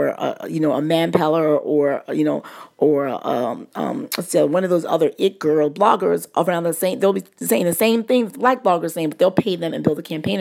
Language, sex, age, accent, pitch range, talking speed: English, female, 40-59, American, 150-175 Hz, 240 wpm